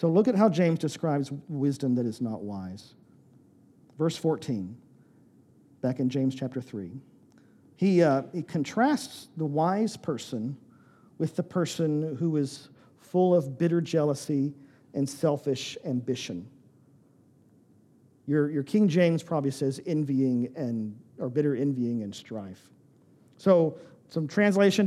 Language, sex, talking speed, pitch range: English, male, 130 wpm, 140-190 Hz